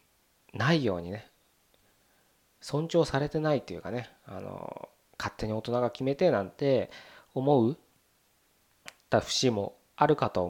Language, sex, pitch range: Japanese, male, 115-165 Hz